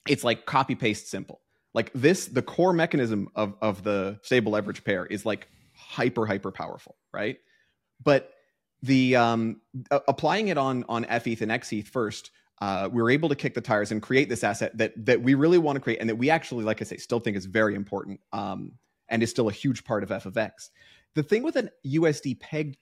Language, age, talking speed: English, 30-49, 215 wpm